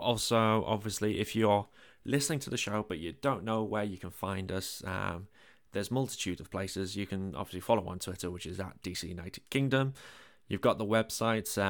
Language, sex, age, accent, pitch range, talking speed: English, male, 20-39, British, 95-110 Hz, 195 wpm